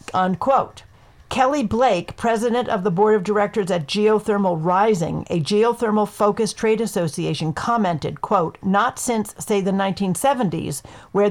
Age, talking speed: 50-69, 135 wpm